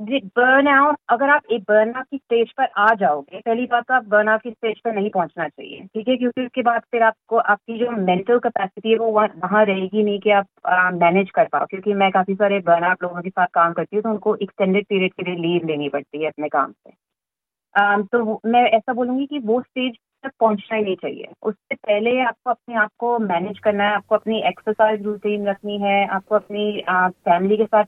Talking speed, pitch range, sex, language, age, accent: 230 wpm, 190-225 Hz, female, Hindi, 30-49, native